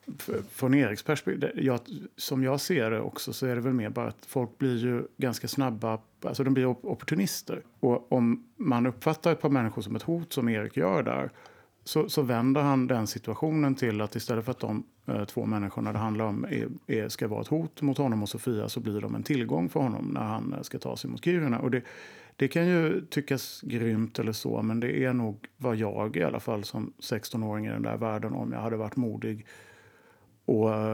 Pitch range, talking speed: 110-135 Hz, 205 wpm